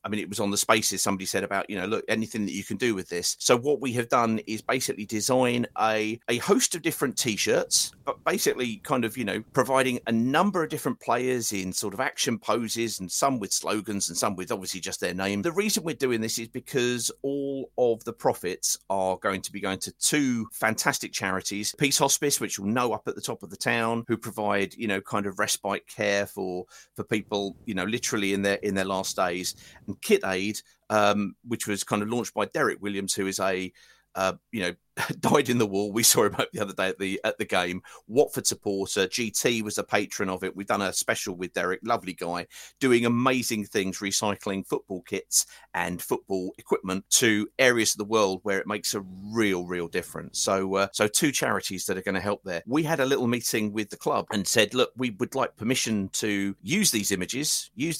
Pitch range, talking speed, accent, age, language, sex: 100-120 Hz, 220 wpm, British, 40-59, English, male